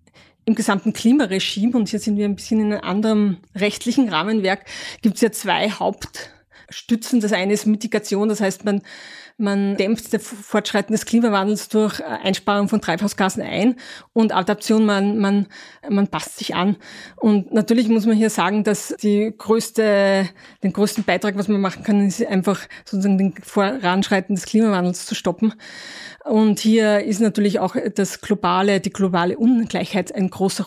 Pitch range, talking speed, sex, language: 195-225 Hz, 160 wpm, female, German